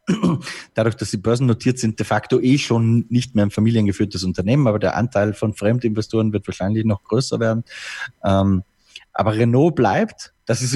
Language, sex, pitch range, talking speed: German, male, 110-135 Hz, 165 wpm